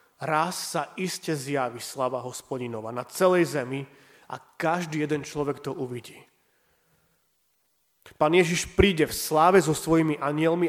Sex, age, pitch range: male, 30-49, 125-165 Hz